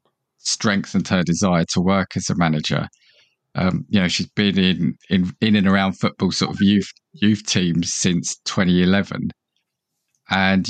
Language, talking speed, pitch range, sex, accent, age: English, 150 wpm, 100-125 Hz, male, British, 20-39